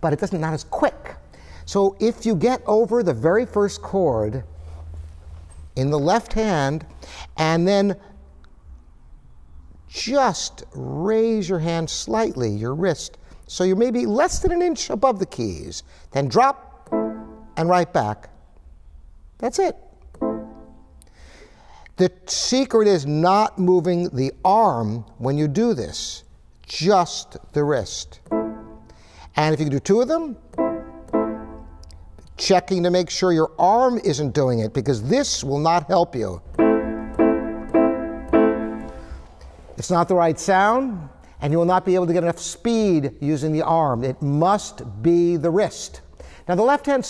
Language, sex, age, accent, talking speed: English, male, 60-79, American, 140 wpm